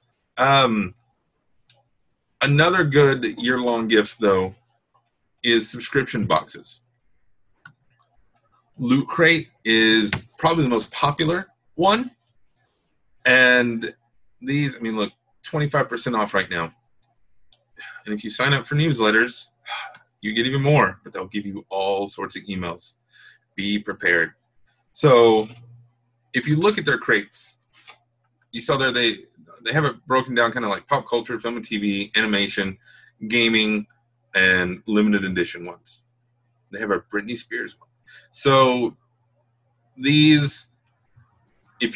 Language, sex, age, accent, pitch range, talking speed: English, male, 30-49, American, 105-125 Hz, 125 wpm